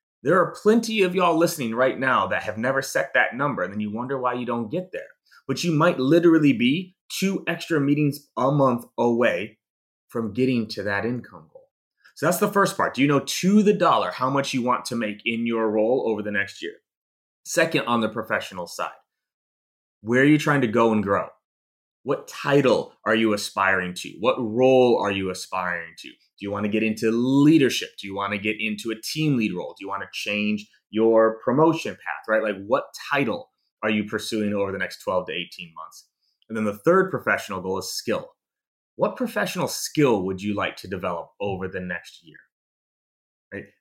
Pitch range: 105-150 Hz